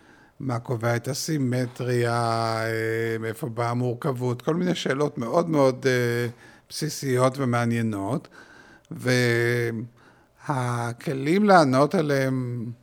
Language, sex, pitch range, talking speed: Hebrew, male, 120-140 Hz, 80 wpm